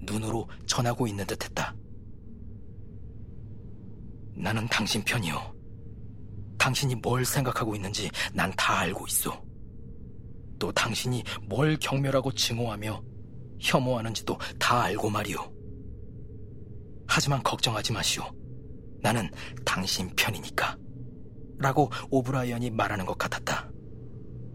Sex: male